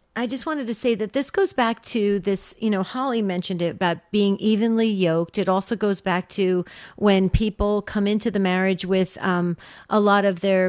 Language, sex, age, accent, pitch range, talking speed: English, female, 40-59, American, 185-220 Hz, 210 wpm